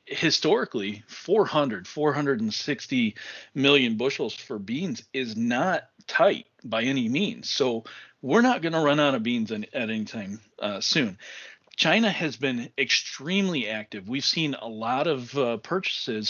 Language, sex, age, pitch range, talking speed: English, male, 40-59, 115-165 Hz, 140 wpm